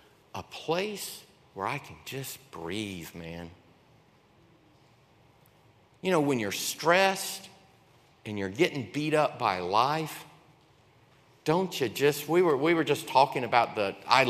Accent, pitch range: American, 115-145 Hz